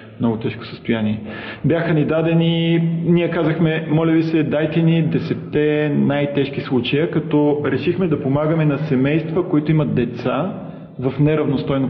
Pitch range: 125-160 Hz